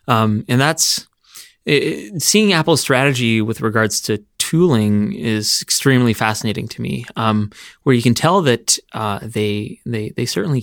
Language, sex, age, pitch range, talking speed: English, male, 20-39, 110-130 Hz, 160 wpm